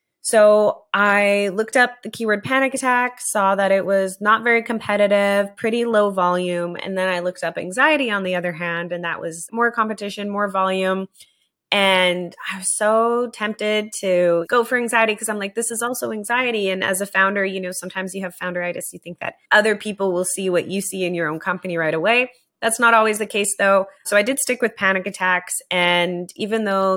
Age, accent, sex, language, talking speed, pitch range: 20-39, American, female, English, 205 wpm, 175-205 Hz